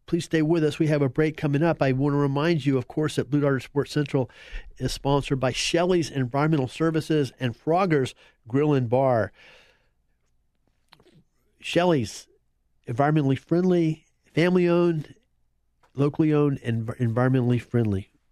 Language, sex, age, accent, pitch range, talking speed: English, male, 50-69, American, 105-150 Hz, 140 wpm